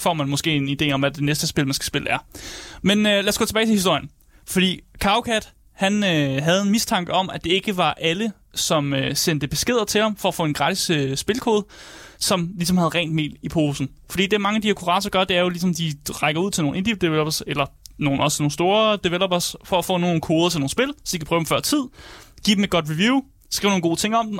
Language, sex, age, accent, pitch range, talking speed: Danish, male, 20-39, native, 150-195 Hz, 265 wpm